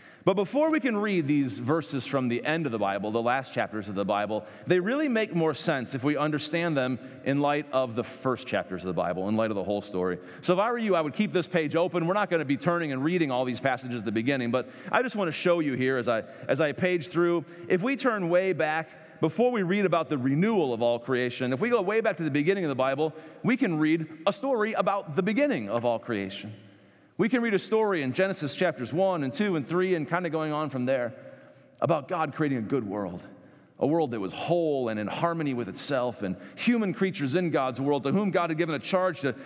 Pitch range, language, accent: 125-175 Hz, English, American